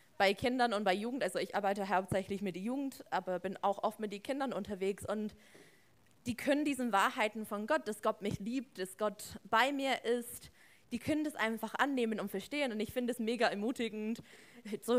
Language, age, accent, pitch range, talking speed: German, 20-39, German, 210-255 Hz, 200 wpm